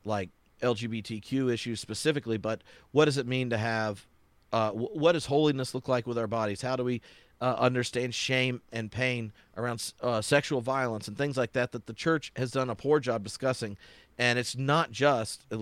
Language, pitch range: English, 110-135 Hz